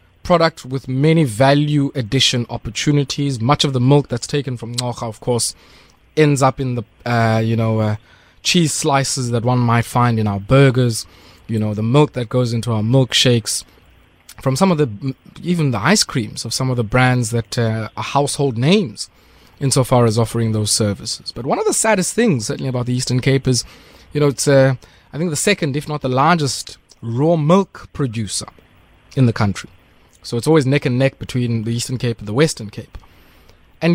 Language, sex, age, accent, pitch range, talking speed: English, male, 20-39, South African, 115-150 Hz, 195 wpm